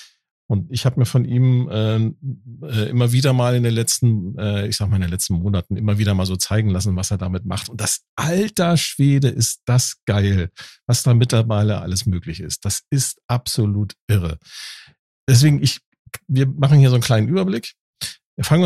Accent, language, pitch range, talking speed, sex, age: German, German, 100-130 Hz, 185 wpm, male, 50-69